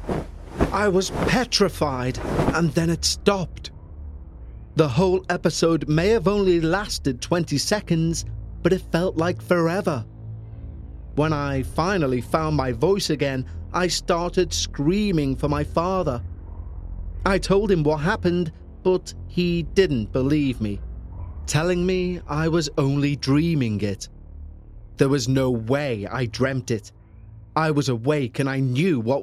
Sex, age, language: male, 30-49, English